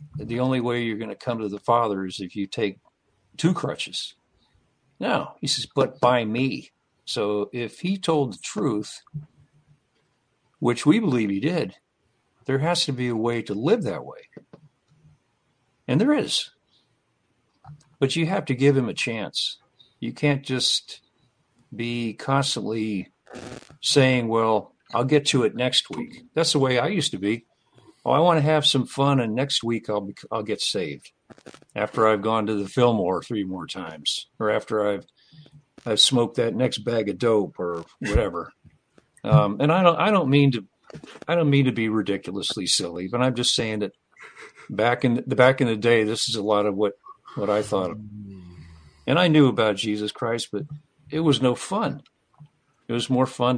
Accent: American